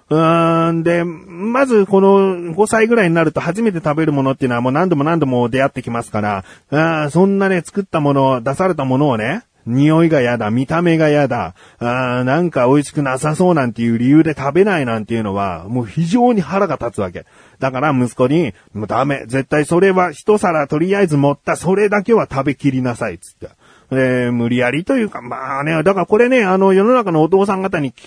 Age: 40-59